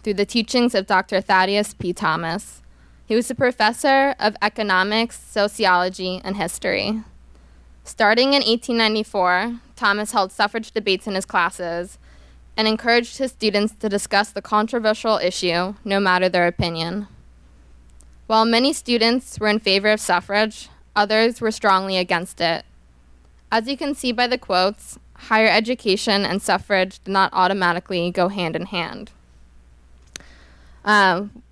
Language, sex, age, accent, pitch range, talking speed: English, female, 20-39, American, 175-220 Hz, 135 wpm